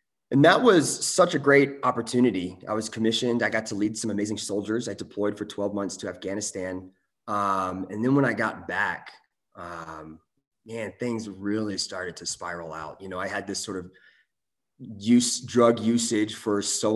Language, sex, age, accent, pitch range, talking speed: English, male, 20-39, American, 95-115 Hz, 180 wpm